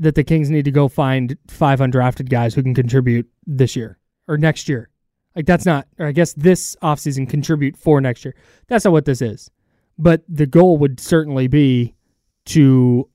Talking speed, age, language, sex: 190 wpm, 20-39, English, male